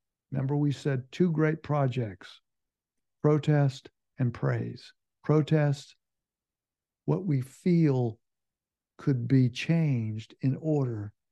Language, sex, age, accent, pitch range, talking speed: English, male, 60-79, American, 105-140 Hz, 95 wpm